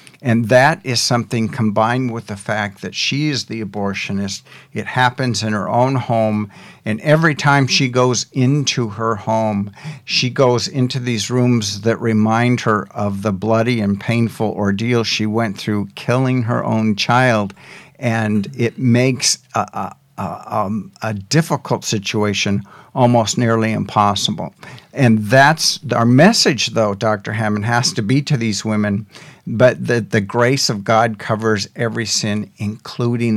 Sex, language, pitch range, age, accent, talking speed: male, English, 110-135 Hz, 60-79, American, 145 wpm